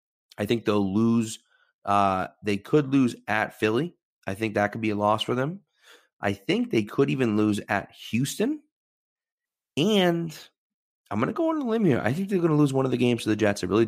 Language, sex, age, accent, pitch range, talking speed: English, male, 30-49, American, 105-120 Hz, 220 wpm